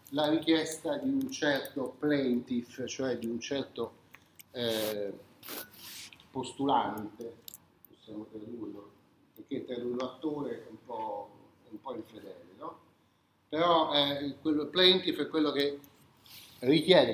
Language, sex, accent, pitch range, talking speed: Italian, male, native, 130-190 Hz, 115 wpm